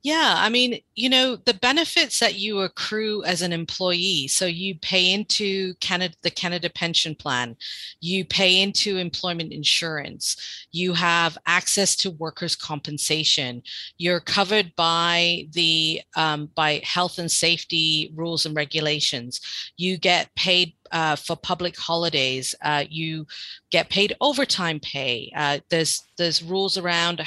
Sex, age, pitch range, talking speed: female, 40-59, 165-205 Hz, 140 wpm